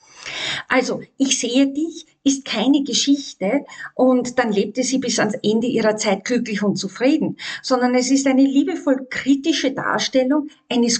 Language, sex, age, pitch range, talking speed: German, female, 50-69, 195-255 Hz, 145 wpm